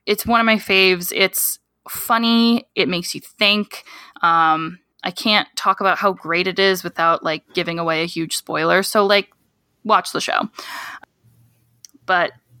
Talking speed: 155 wpm